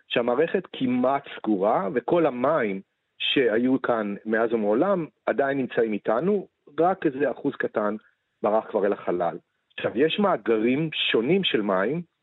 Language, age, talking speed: Hebrew, 40-59, 130 wpm